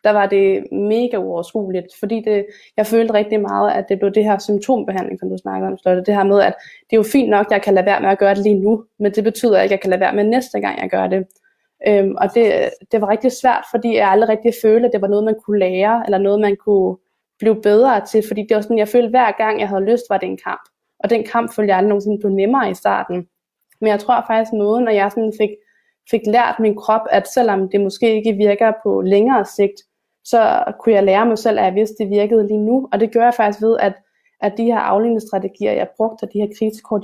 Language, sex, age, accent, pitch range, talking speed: English, female, 20-39, Danish, 195-225 Hz, 260 wpm